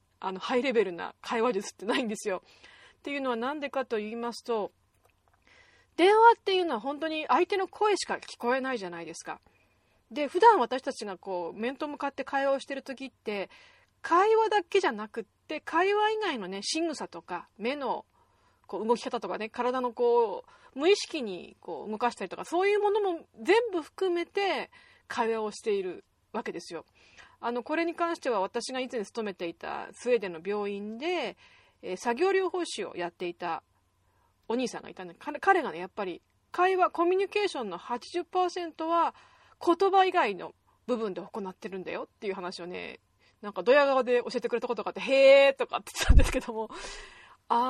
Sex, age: female, 30-49